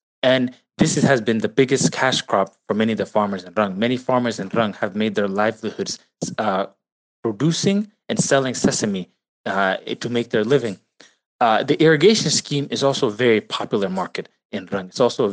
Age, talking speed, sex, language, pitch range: 20-39, 190 wpm, male, English, 105-135 Hz